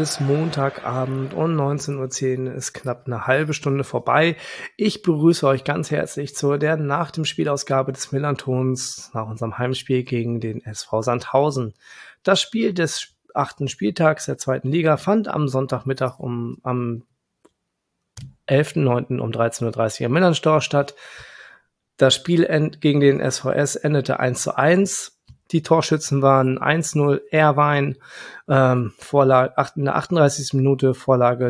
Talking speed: 130 wpm